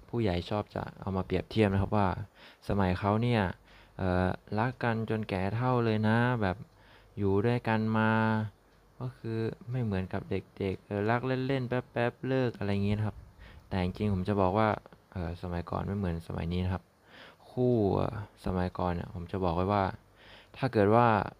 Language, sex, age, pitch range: Thai, male, 20-39, 95-110 Hz